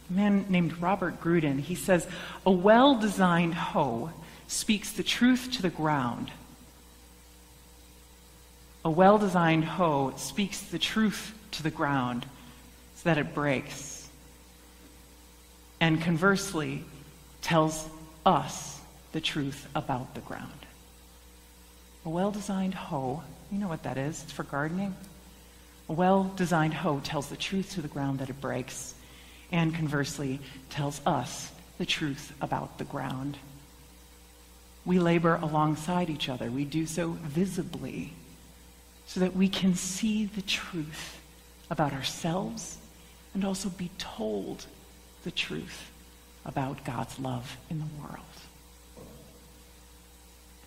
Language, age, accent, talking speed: English, 40-59, American, 125 wpm